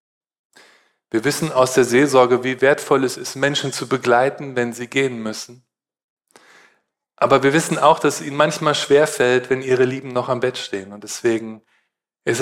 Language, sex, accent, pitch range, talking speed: German, male, German, 115-145 Hz, 170 wpm